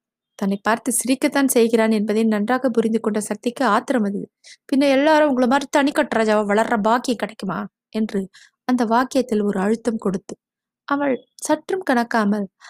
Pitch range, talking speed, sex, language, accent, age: 210-250 Hz, 135 wpm, female, Tamil, native, 20-39